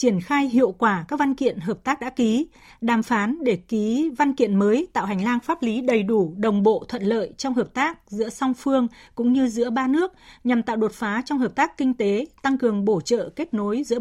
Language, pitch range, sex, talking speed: Vietnamese, 215-270 Hz, female, 240 wpm